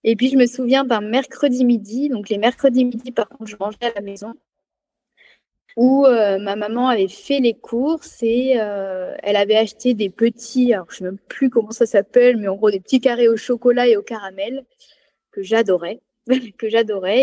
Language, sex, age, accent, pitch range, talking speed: French, female, 20-39, French, 205-250 Hz, 205 wpm